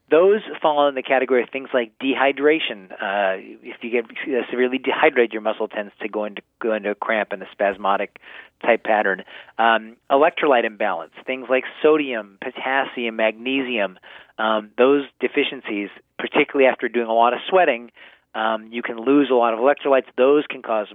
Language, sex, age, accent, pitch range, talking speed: English, male, 40-59, American, 110-135 Hz, 165 wpm